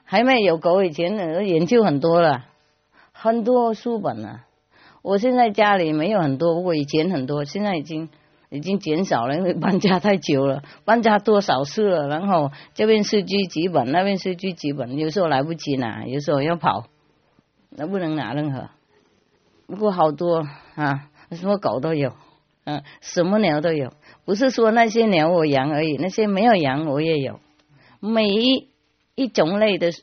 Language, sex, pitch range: English, female, 145-195 Hz